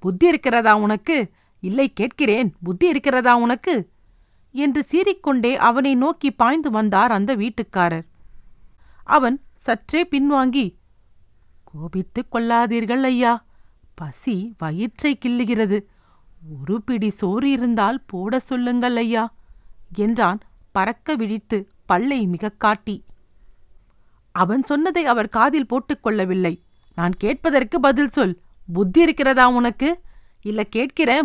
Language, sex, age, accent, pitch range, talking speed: Tamil, female, 50-69, native, 195-270 Hz, 100 wpm